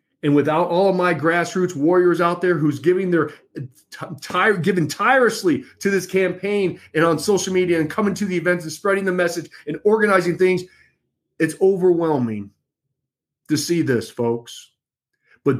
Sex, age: male, 40-59